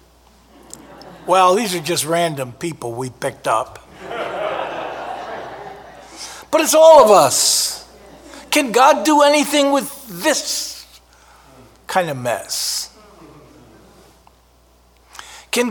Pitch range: 130-210 Hz